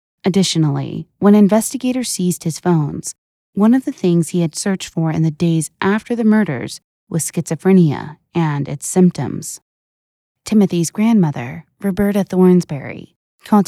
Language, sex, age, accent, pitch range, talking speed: English, female, 20-39, American, 155-195 Hz, 130 wpm